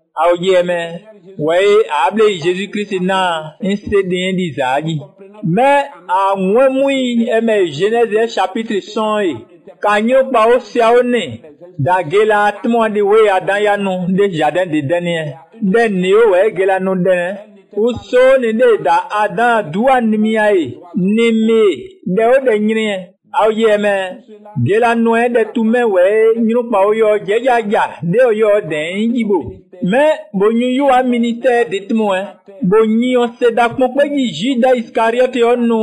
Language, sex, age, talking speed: English, male, 50-69, 120 wpm